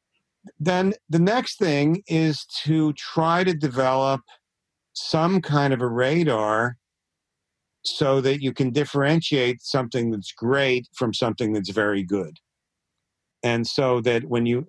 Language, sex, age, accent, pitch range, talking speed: English, male, 50-69, American, 110-145 Hz, 130 wpm